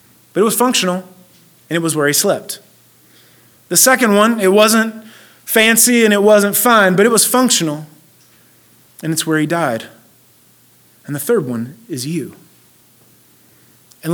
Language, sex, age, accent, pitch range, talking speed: English, male, 30-49, American, 155-205 Hz, 155 wpm